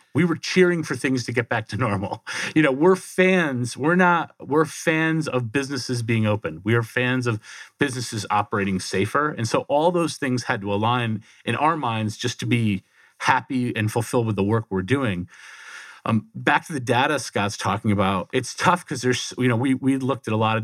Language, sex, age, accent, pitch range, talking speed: English, male, 40-59, American, 105-135 Hz, 210 wpm